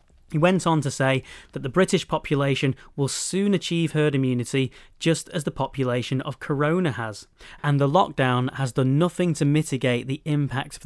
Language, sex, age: English, male, 30-49